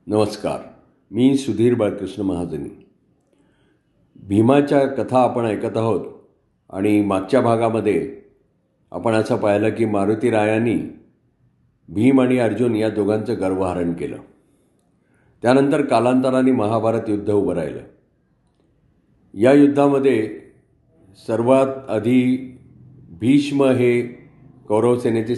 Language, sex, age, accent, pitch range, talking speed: Marathi, male, 50-69, native, 110-130 Hz, 75 wpm